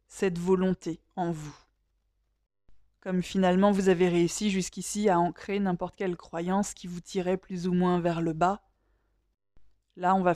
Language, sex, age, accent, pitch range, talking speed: French, female, 20-39, French, 175-220 Hz, 155 wpm